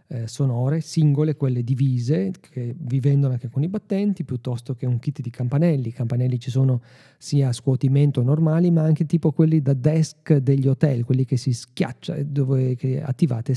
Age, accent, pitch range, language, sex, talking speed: 40-59, native, 125-160 Hz, Italian, male, 175 wpm